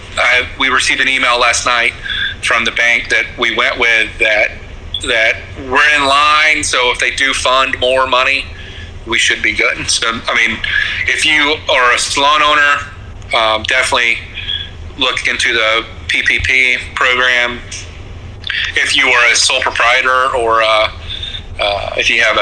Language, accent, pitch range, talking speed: English, American, 90-125 Hz, 155 wpm